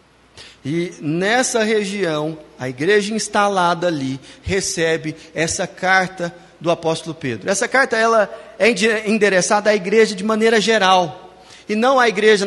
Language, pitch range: Portuguese, 170-235 Hz